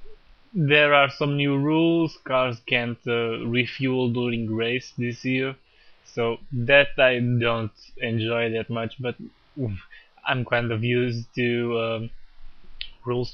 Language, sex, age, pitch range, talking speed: English, male, 20-39, 115-130 Hz, 125 wpm